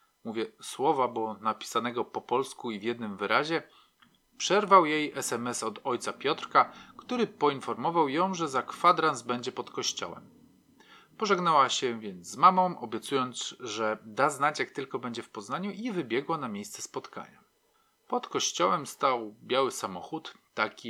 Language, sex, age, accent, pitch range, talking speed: Polish, male, 40-59, native, 115-185 Hz, 145 wpm